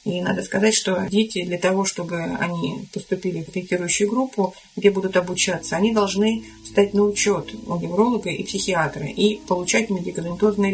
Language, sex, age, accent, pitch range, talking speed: Russian, female, 30-49, native, 175-205 Hz, 155 wpm